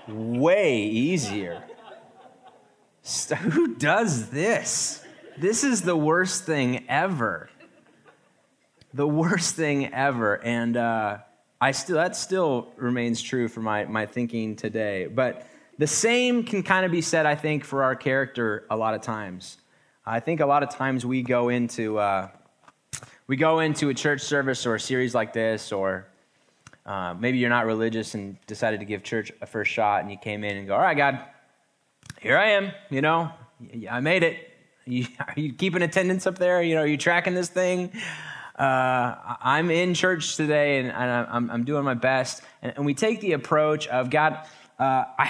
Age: 20-39